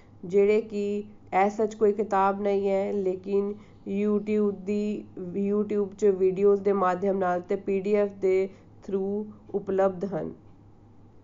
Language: Punjabi